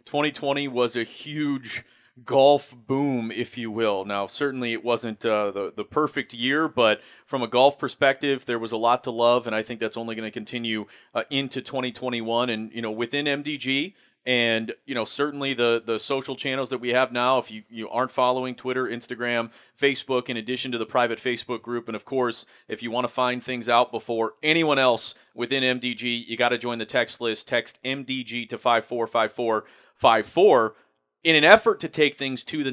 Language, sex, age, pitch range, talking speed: English, male, 30-49, 115-135 Hz, 195 wpm